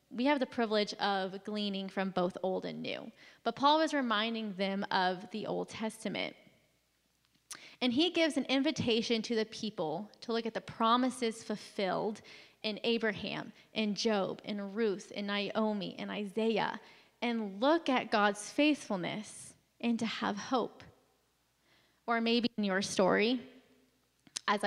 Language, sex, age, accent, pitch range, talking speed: English, female, 10-29, American, 205-255 Hz, 145 wpm